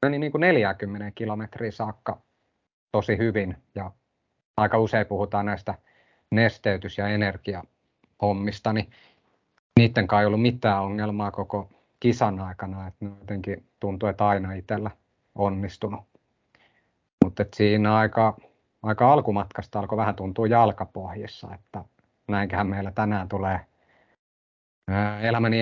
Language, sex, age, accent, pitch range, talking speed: Finnish, male, 30-49, native, 100-115 Hz, 105 wpm